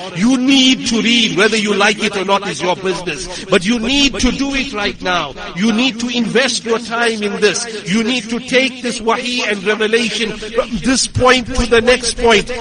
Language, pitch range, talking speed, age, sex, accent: English, 190-235 Hz, 210 wpm, 50-69, male, South African